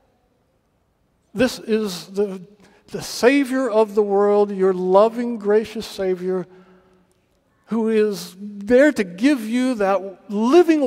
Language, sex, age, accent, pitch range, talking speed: English, male, 60-79, American, 210-265 Hz, 110 wpm